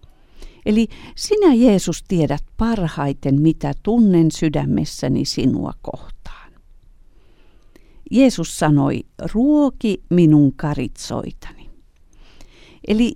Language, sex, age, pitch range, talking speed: Finnish, female, 50-69, 145-225 Hz, 75 wpm